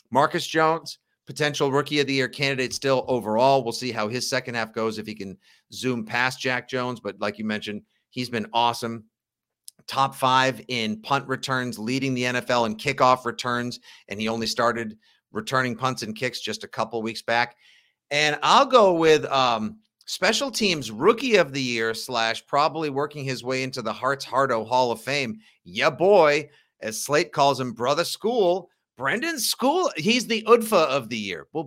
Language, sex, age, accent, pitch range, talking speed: English, male, 50-69, American, 120-170 Hz, 180 wpm